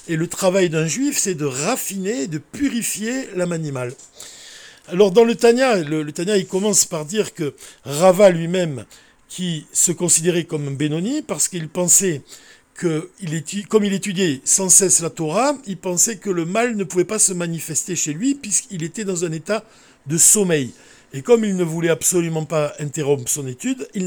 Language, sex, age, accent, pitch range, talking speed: French, male, 60-79, French, 155-195 Hz, 180 wpm